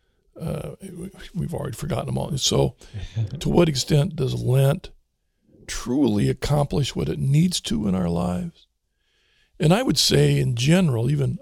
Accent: American